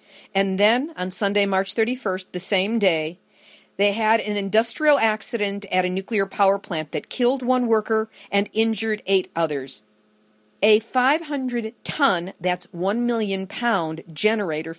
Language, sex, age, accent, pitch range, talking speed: English, female, 40-59, American, 180-230 Hz, 140 wpm